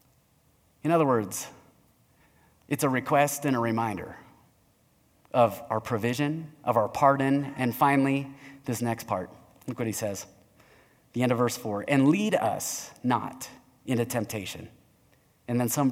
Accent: American